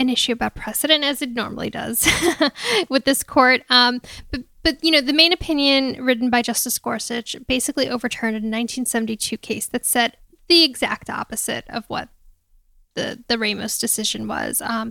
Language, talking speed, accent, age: English, 165 wpm, American, 10-29